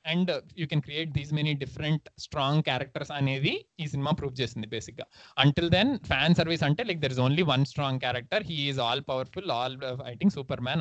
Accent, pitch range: native, 130-160 Hz